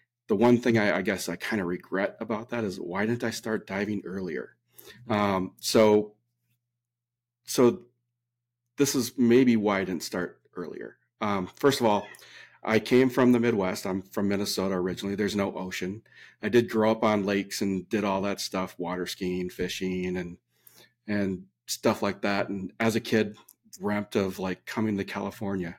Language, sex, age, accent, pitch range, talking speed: English, male, 40-59, American, 95-120 Hz, 175 wpm